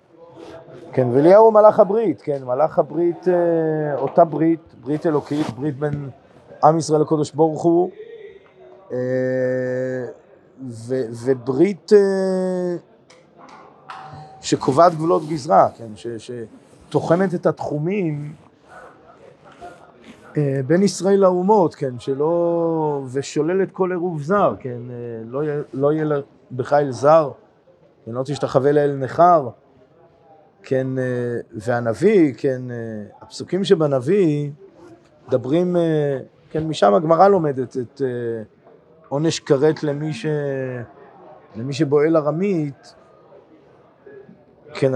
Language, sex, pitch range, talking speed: Hebrew, male, 130-170 Hz, 90 wpm